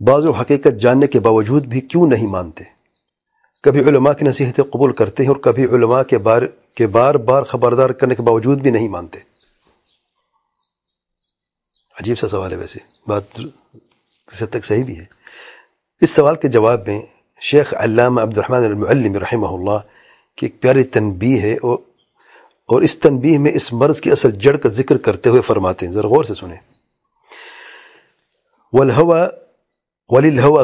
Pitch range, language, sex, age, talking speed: 115-155 Hz, English, male, 40-59, 145 wpm